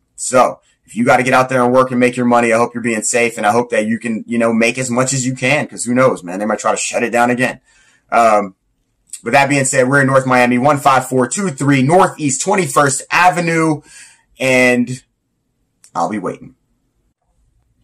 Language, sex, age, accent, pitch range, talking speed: English, male, 30-49, American, 100-130 Hz, 210 wpm